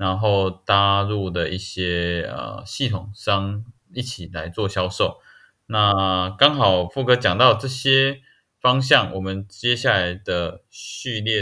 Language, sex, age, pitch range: Chinese, male, 20-39, 95-115 Hz